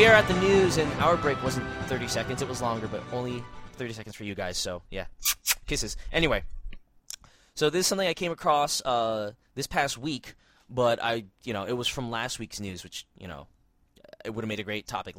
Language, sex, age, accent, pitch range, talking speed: English, male, 20-39, American, 110-145 Hz, 220 wpm